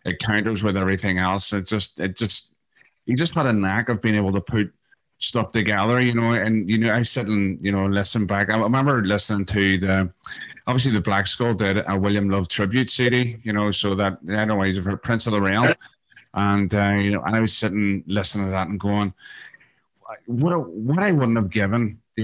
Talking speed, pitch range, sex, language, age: 215 wpm, 100-115 Hz, male, English, 30-49